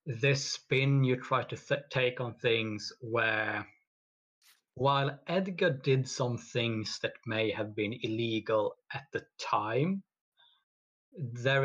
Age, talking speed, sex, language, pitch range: 30-49, 120 wpm, male, English, 105-145 Hz